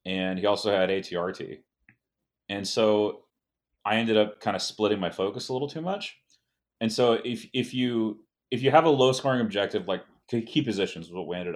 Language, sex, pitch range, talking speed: English, male, 95-125 Hz, 195 wpm